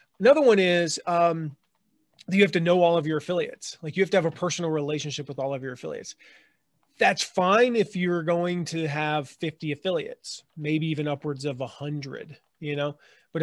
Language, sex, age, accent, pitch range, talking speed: English, male, 30-49, American, 150-200 Hz, 190 wpm